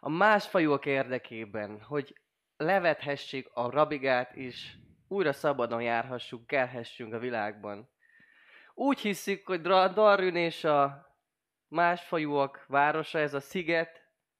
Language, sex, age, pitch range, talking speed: Hungarian, male, 20-39, 125-160 Hz, 110 wpm